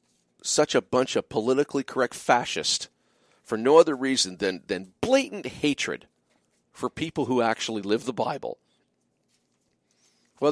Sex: male